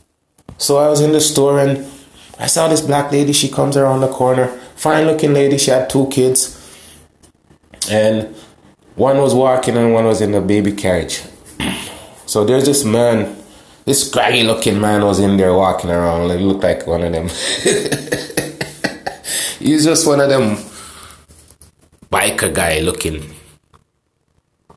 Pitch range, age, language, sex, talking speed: 105-150 Hz, 20-39, English, male, 150 wpm